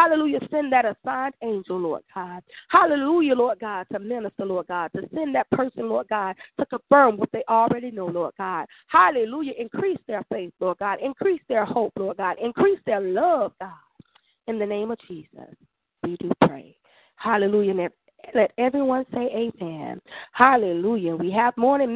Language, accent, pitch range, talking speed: English, American, 195-255 Hz, 165 wpm